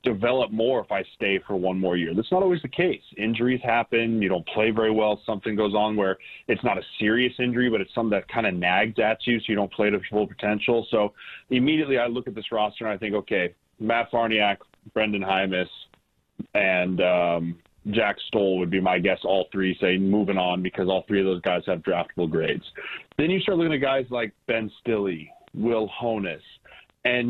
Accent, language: American, English